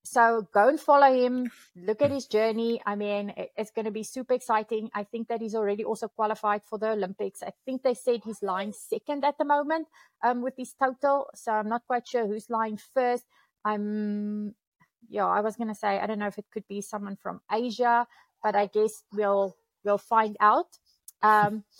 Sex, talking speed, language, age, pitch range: female, 205 wpm, English, 30-49, 210-240 Hz